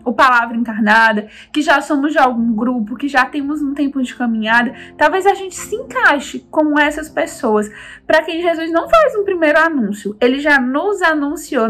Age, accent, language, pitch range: 10-29, Brazilian, Portuguese, 245-330 Hz